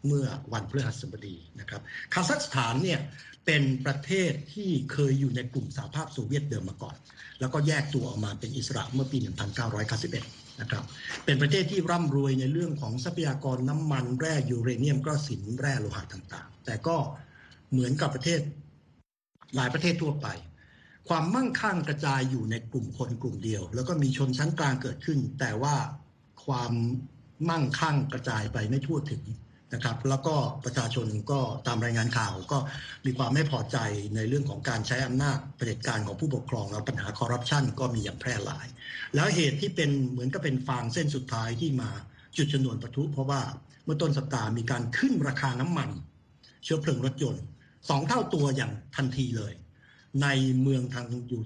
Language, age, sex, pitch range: Thai, 60-79, male, 125-145 Hz